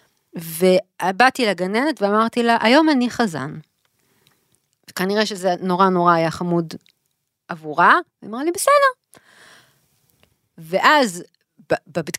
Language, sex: Hebrew, female